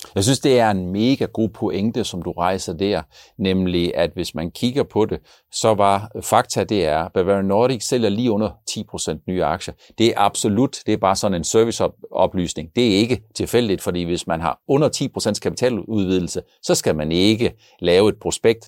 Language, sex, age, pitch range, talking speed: Danish, male, 60-79, 95-125 Hz, 195 wpm